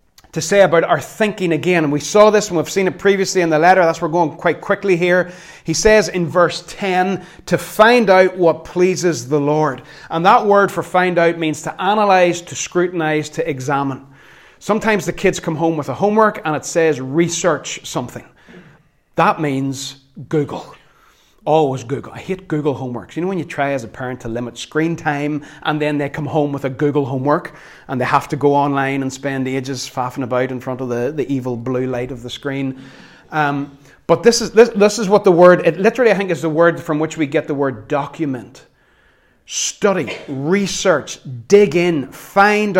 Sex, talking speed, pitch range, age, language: male, 200 wpm, 140-180 Hz, 30-49, English